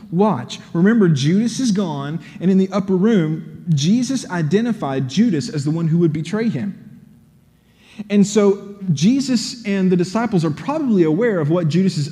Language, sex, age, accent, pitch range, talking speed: English, male, 30-49, American, 145-195 Hz, 165 wpm